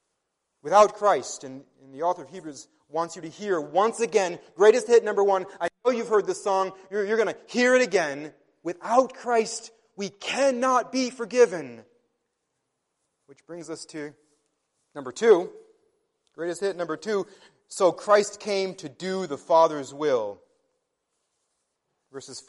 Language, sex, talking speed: English, male, 150 wpm